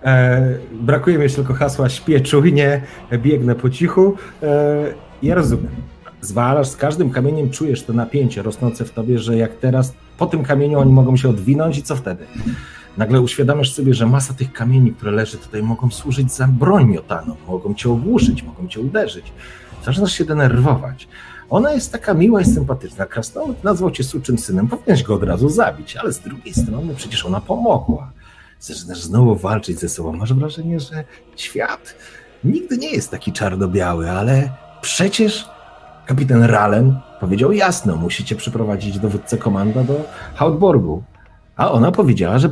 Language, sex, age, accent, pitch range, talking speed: Polish, male, 40-59, native, 110-145 Hz, 160 wpm